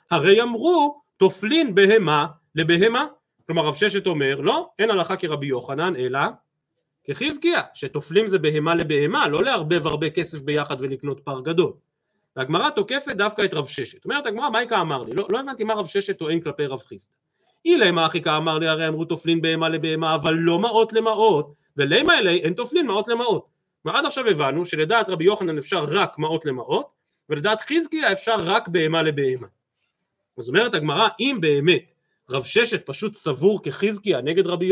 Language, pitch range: Hebrew, 160-250 Hz